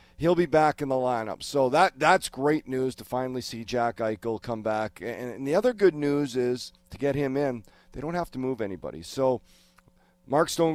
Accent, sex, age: American, male, 40-59